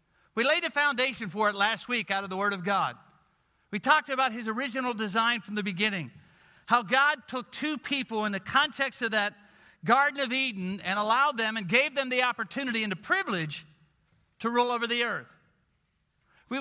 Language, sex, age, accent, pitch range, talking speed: English, male, 50-69, American, 195-250 Hz, 190 wpm